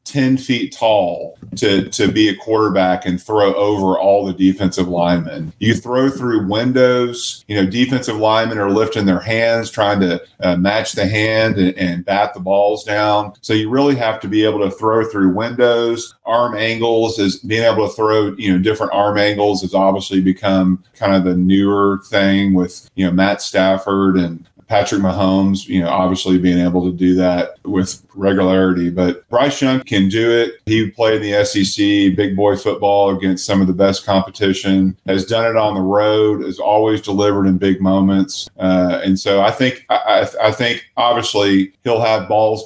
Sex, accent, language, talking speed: male, American, English, 185 wpm